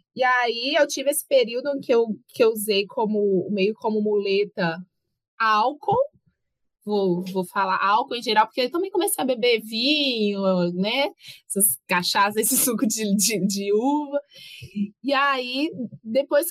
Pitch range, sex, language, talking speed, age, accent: 195-255 Hz, female, Portuguese, 155 wpm, 20-39, Brazilian